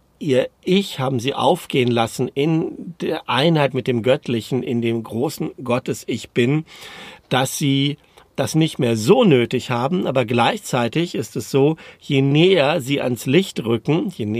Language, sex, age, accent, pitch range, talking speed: German, male, 50-69, German, 115-145 Hz, 150 wpm